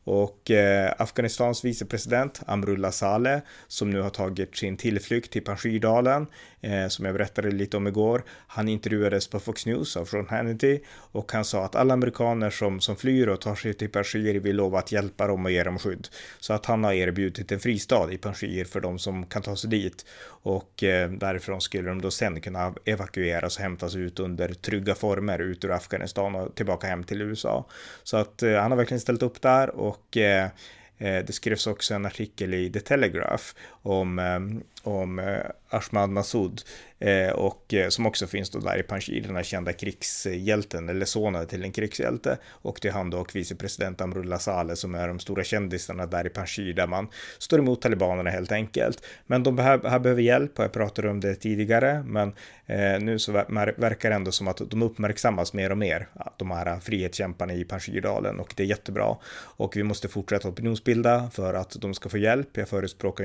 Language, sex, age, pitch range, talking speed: Swedish, male, 30-49, 95-110 Hz, 190 wpm